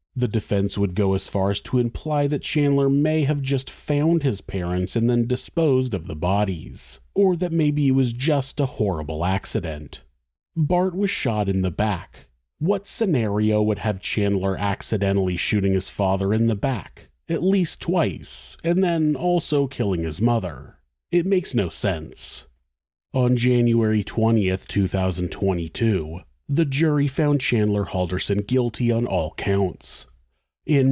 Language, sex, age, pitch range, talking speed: English, male, 30-49, 95-140 Hz, 150 wpm